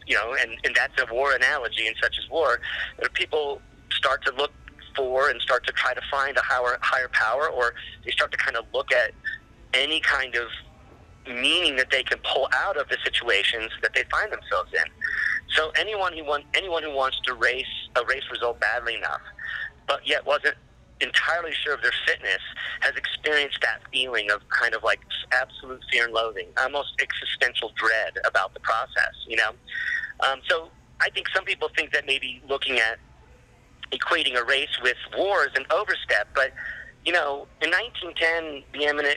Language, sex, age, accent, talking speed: English, male, 40-59, American, 185 wpm